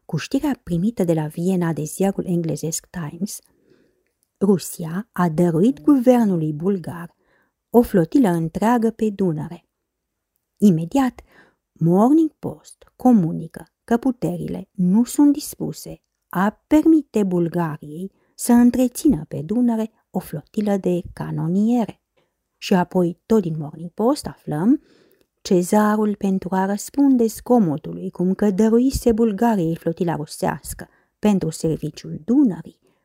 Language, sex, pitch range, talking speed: English, female, 170-235 Hz, 110 wpm